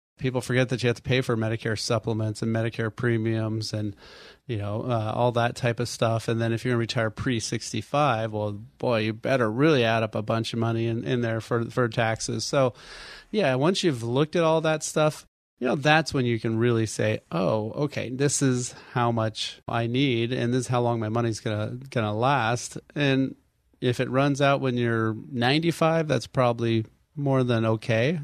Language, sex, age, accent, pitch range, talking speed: English, male, 30-49, American, 115-135 Hz, 205 wpm